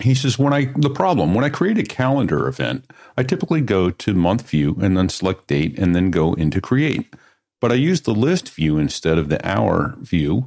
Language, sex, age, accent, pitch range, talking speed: English, male, 50-69, American, 90-135 Hz, 220 wpm